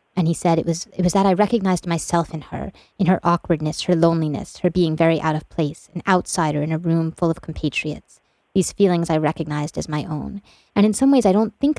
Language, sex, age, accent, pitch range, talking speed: English, female, 30-49, American, 155-185 Hz, 235 wpm